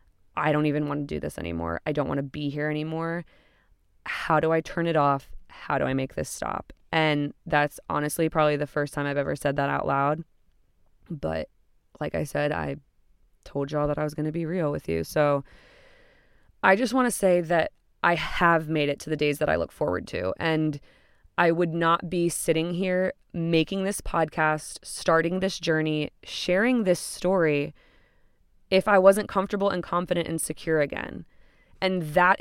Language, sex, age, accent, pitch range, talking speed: English, female, 20-39, American, 150-190 Hz, 190 wpm